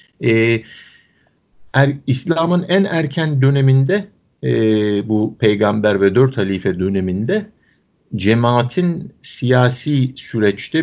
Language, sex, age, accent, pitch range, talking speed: Turkish, male, 50-69, native, 100-140 Hz, 90 wpm